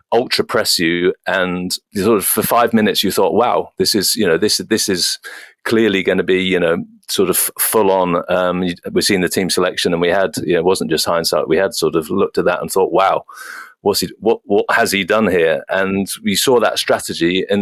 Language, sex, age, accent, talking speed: English, male, 40-59, British, 230 wpm